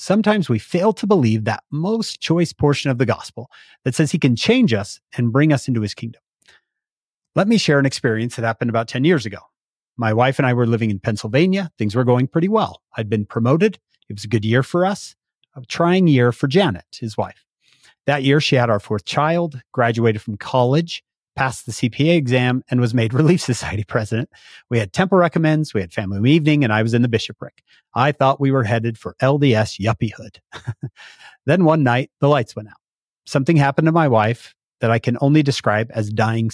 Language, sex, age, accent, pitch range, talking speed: English, male, 30-49, American, 115-150 Hz, 210 wpm